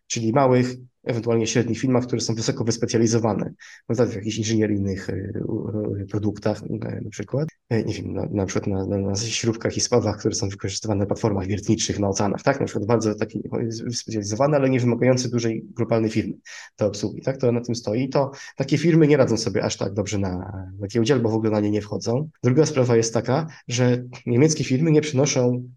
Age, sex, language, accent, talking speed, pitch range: 20-39, male, Polish, native, 180 wpm, 110-130 Hz